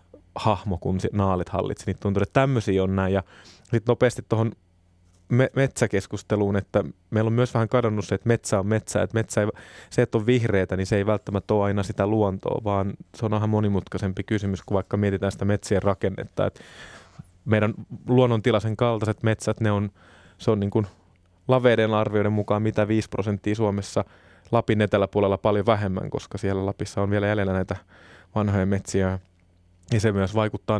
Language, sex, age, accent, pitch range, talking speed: Finnish, male, 20-39, native, 95-110 Hz, 170 wpm